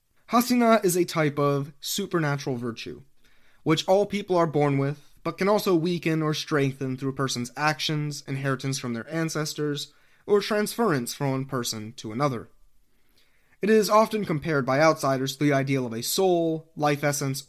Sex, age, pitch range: male, 20-39, 135-185 Hz